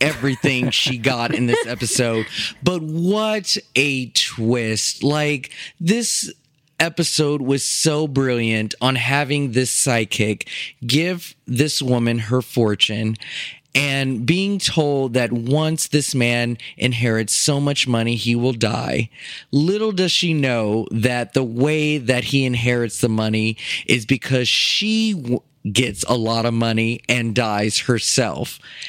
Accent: American